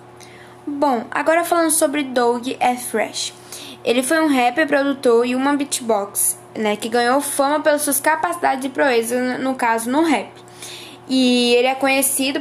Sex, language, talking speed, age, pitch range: female, Portuguese, 155 wpm, 10-29, 230-285 Hz